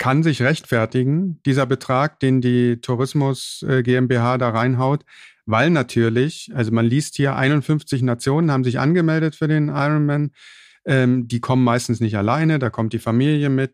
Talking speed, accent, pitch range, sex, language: 155 wpm, German, 115-140 Hz, male, German